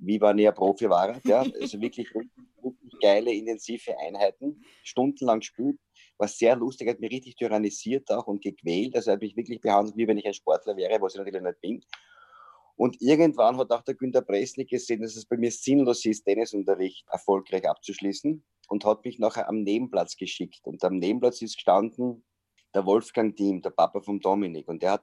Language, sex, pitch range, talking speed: German, male, 105-125 Hz, 190 wpm